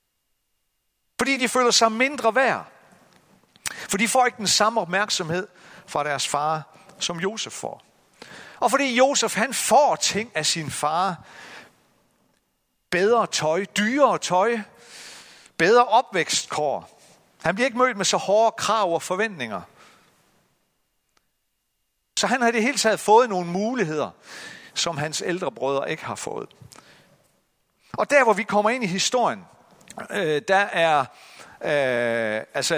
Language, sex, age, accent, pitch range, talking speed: Danish, male, 60-79, native, 165-225 Hz, 130 wpm